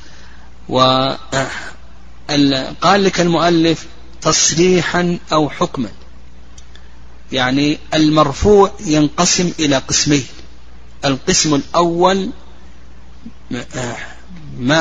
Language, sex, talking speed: Arabic, male, 55 wpm